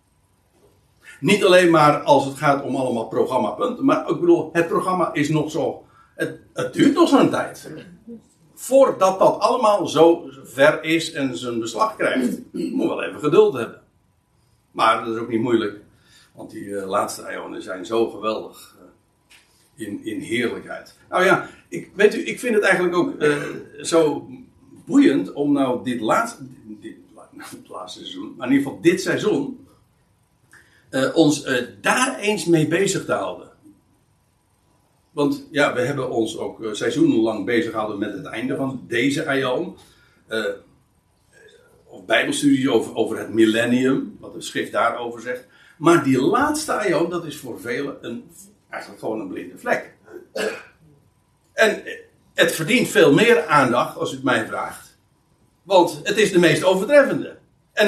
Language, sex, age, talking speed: Dutch, male, 60-79, 160 wpm